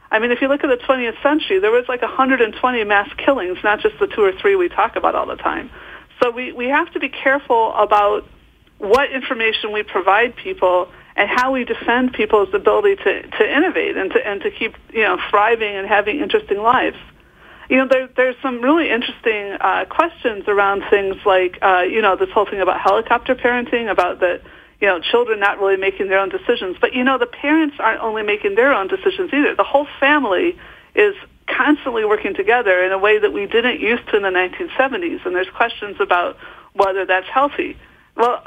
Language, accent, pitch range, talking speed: English, American, 210-340 Hz, 205 wpm